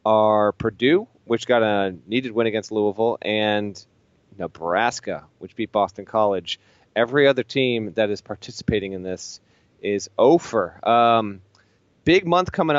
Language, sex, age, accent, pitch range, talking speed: English, male, 30-49, American, 110-130 Hz, 135 wpm